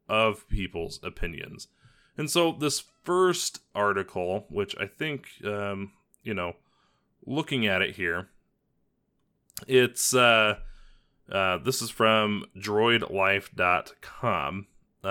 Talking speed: 100 wpm